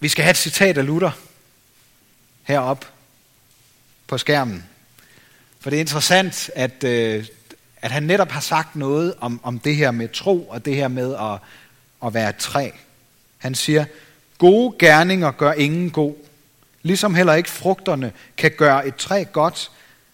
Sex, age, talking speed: male, 40-59, 155 wpm